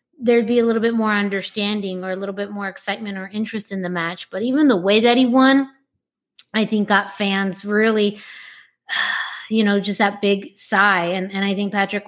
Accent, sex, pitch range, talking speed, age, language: American, female, 190-225 Hz, 205 wpm, 20-39, English